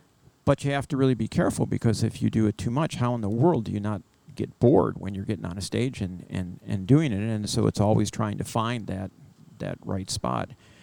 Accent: American